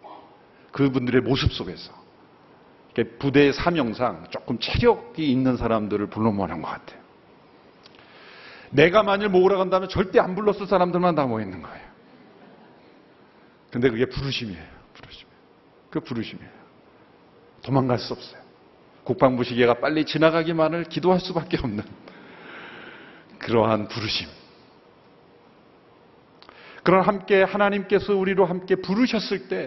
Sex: male